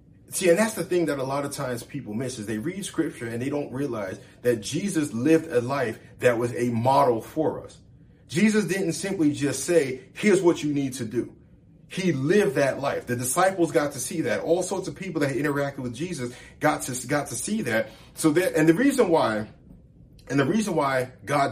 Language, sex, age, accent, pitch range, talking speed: English, male, 40-59, American, 130-170 Hz, 215 wpm